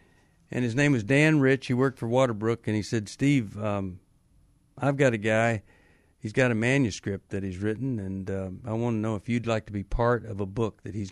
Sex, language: male, English